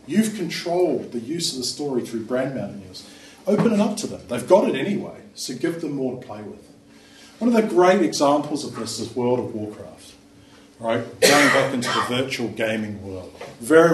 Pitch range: 115-170 Hz